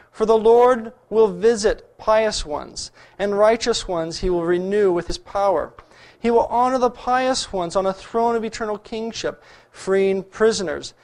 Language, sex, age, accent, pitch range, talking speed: English, male, 40-59, American, 165-225 Hz, 165 wpm